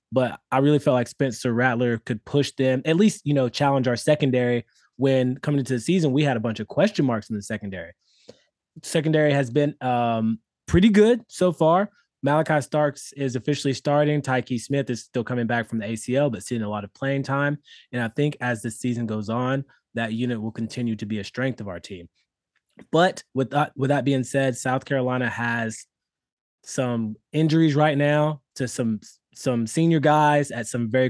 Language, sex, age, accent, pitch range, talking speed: English, male, 20-39, American, 120-145 Hz, 195 wpm